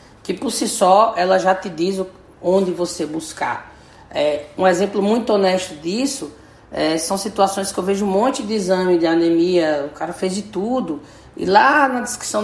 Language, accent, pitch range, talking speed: Portuguese, Brazilian, 150-190 Hz, 185 wpm